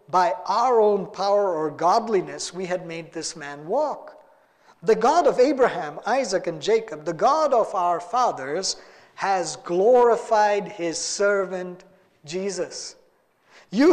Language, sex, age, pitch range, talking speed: English, male, 50-69, 180-260 Hz, 130 wpm